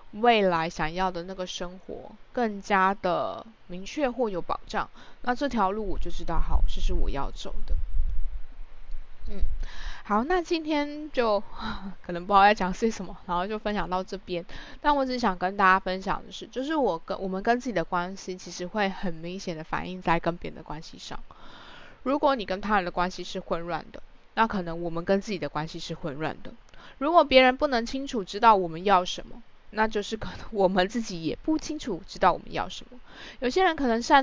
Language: Chinese